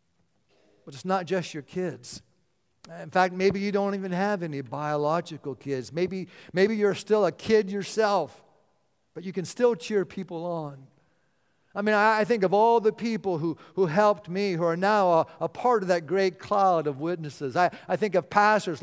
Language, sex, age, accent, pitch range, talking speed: English, male, 50-69, American, 155-195 Hz, 195 wpm